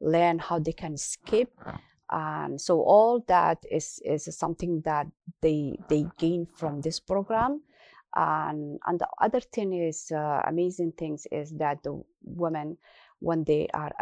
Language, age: English, 30-49